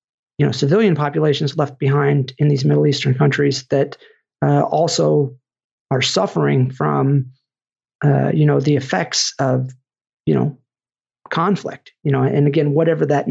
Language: English